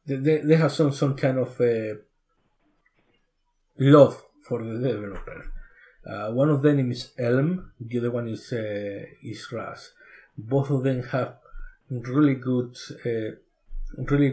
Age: 50-69